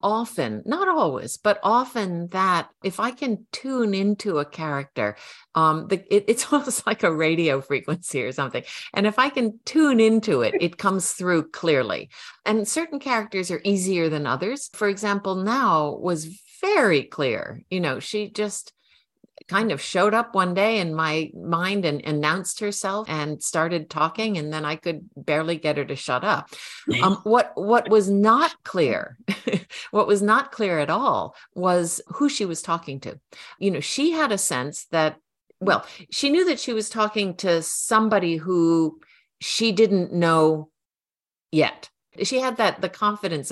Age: 50-69